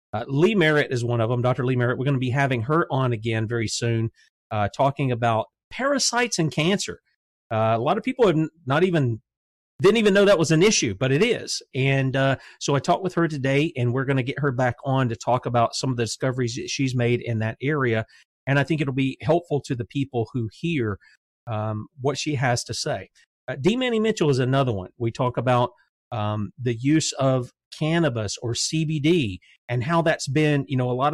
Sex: male